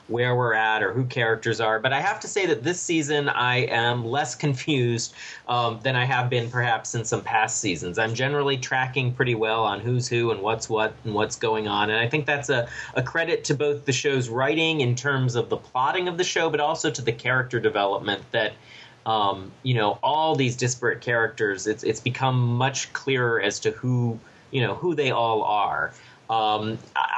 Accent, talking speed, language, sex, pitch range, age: American, 205 wpm, English, male, 115-140 Hz, 30-49